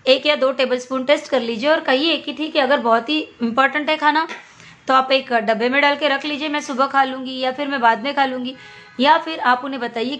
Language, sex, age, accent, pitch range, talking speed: Hindi, female, 20-39, native, 245-295 Hz, 255 wpm